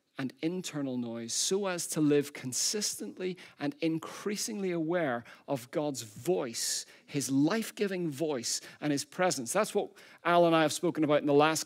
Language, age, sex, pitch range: English, 40-59, male, 145-185 Hz